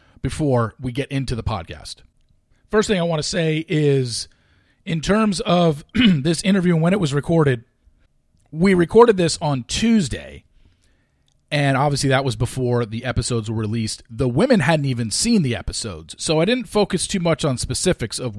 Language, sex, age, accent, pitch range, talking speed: English, male, 40-59, American, 110-160 Hz, 175 wpm